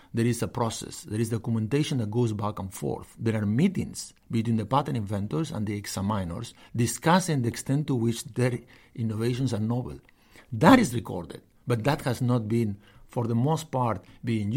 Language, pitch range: English, 110-135 Hz